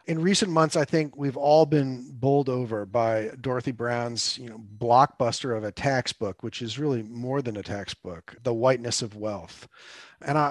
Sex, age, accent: male, 40-59, American